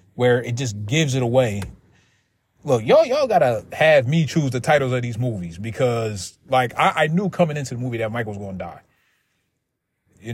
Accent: American